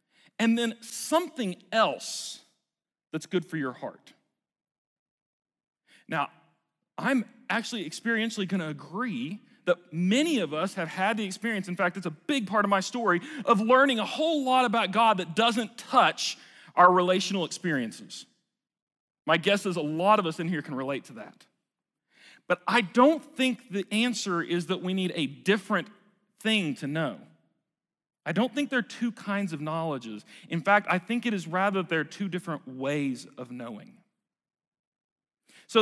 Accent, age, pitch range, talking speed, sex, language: American, 40-59, 175-235 Hz, 165 wpm, male, English